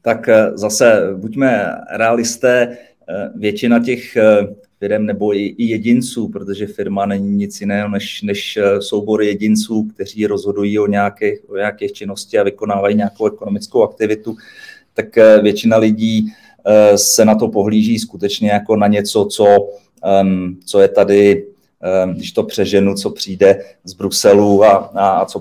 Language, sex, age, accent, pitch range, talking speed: Czech, male, 30-49, native, 100-120 Hz, 135 wpm